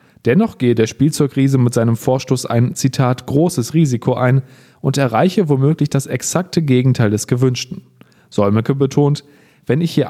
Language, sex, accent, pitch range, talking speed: German, male, German, 125-145 Hz, 150 wpm